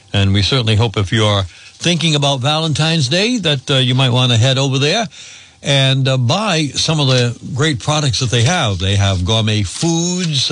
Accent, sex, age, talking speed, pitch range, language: American, male, 60-79, 200 wpm, 110-140 Hz, English